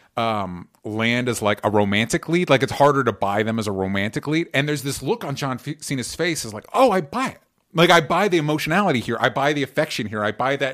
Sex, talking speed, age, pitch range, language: male, 250 wpm, 30-49, 105-135 Hz, English